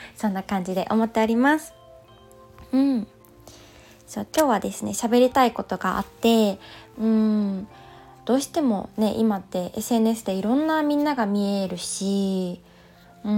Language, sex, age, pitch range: Japanese, female, 20-39, 185-225 Hz